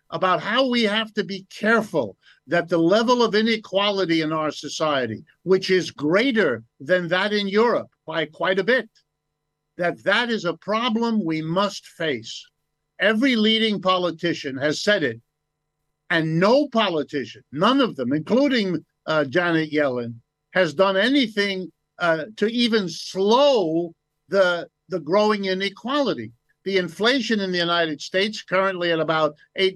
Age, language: 50-69, English